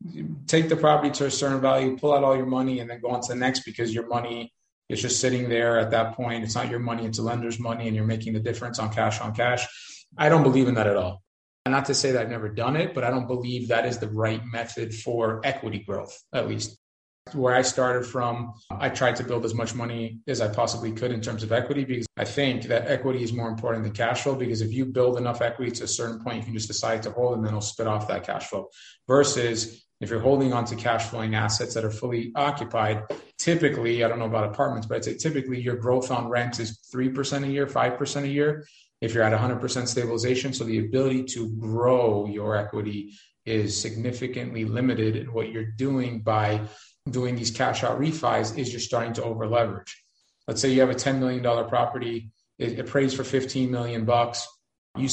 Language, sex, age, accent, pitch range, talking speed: English, male, 30-49, American, 115-130 Hz, 230 wpm